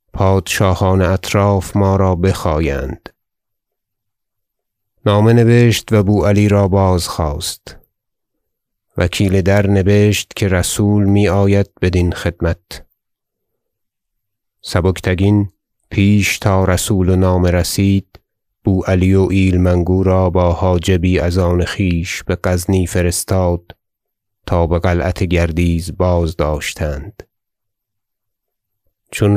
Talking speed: 100 wpm